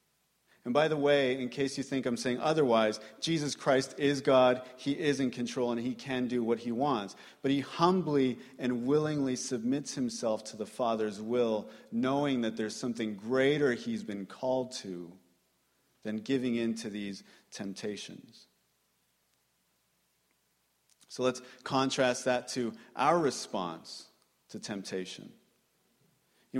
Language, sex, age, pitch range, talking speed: English, male, 40-59, 110-135 Hz, 140 wpm